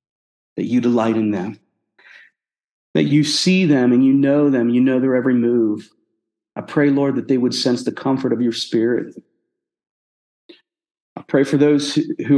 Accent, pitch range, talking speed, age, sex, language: American, 115-135 Hz, 170 wpm, 40-59, male, English